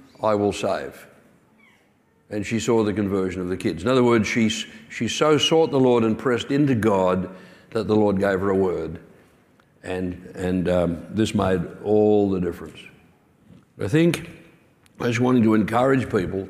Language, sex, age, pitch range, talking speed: English, male, 60-79, 105-130 Hz, 170 wpm